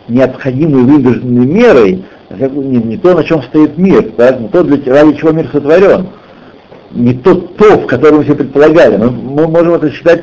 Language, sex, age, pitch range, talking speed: Russian, male, 60-79, 130-185 Hz, 175 wpm